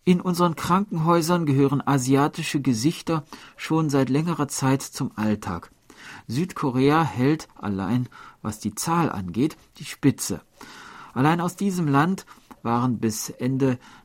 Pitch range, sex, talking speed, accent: 105-140 Hz, male, 120 wpm, German